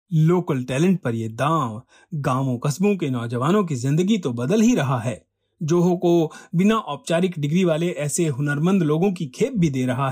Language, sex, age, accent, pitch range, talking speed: Hindi, male, 40-59, native, 140-200 Hz, 180 wpm